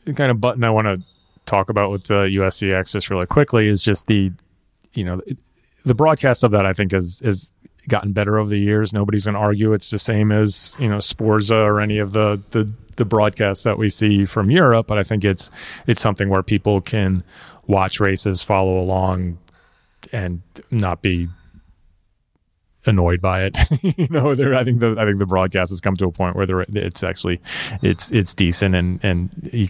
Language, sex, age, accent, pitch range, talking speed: English, male, 30-49, American, 95-110 Hz, 205 wpm